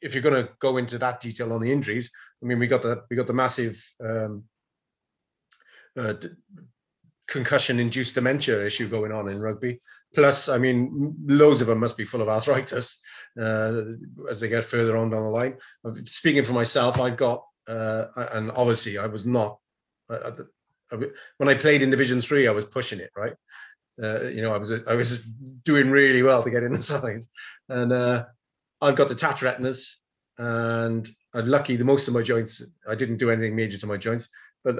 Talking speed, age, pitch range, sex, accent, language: 200 wpm, 30-49, 115-135 Hz, male, British, English